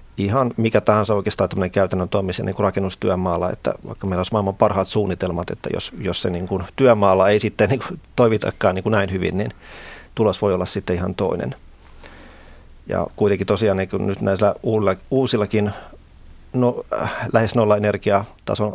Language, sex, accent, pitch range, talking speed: Finnish, male, native, 95-105 Hz, 150 wpm